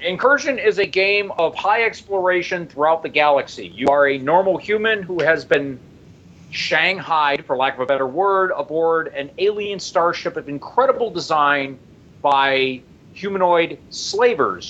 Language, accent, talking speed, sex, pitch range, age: English, American, 145 wpm, male, 140-185 Hz, 40-59